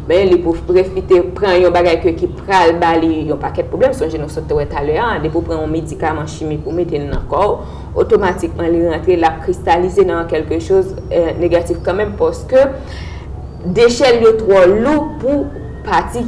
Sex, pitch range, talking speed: female, 165-270 Hz, 180 wpm